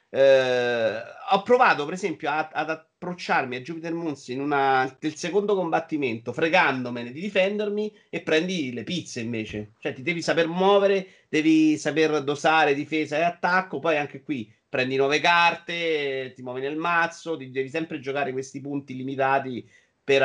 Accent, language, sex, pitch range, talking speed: native, Italian, male, 120-165 Hz, 150 wpm